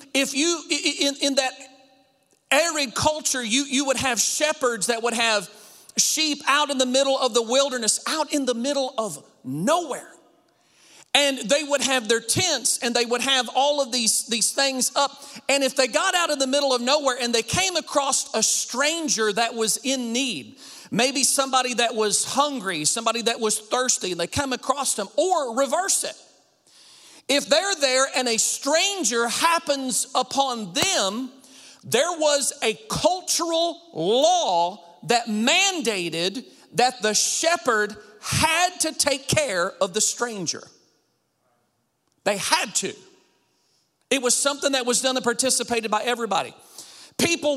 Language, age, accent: English, 40-59, American